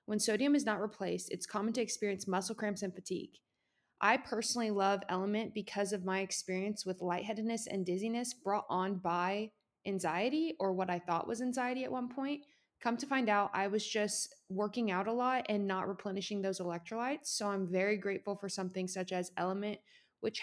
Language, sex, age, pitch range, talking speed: English, female, 20-39, 190-220 Hz, 190 wpm